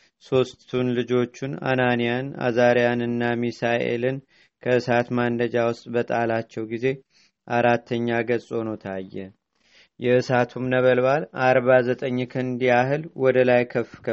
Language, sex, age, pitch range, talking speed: Amharic, male, 30-49, 120-130 Hz, 95 wpm